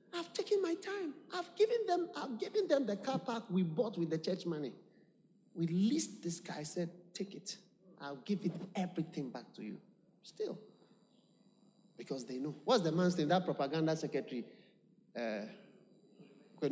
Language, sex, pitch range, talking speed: English, male, 160-210 Hz, 165 wpm